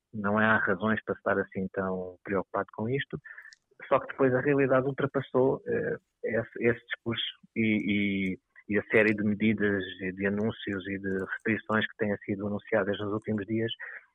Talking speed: 165 wpm